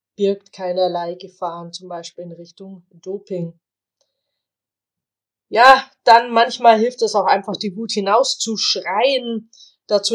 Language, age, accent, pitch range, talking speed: German, 20-39, German, 185-225 Hz, 110 wpm